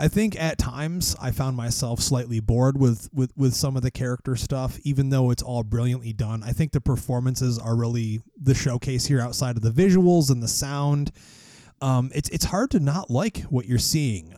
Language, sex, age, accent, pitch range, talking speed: English, male, 30-49, American, 115-145 Hz, 205 wpm